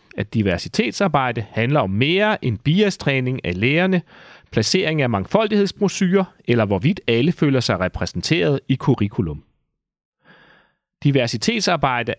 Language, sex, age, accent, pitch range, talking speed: Danish, male, 30-49, native, 110-180 Hz, 105 wpm